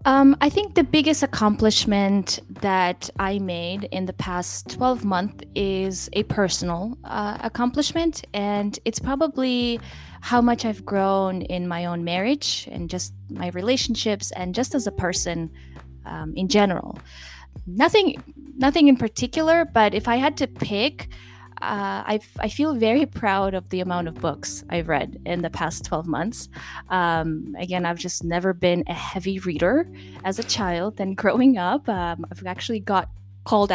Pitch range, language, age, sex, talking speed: 175-230 Hz, English, 10-29, female, 160 wpm